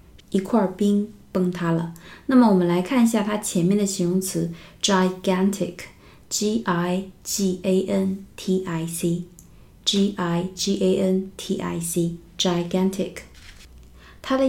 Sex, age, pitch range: female, 20-39, 170-195 Hz